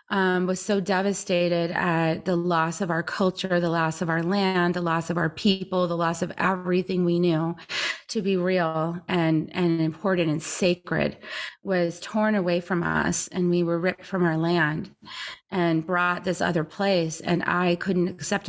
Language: English